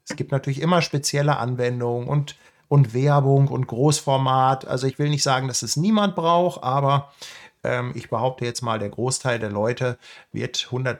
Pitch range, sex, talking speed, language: 130-165 Hz, male, 170 wpm, German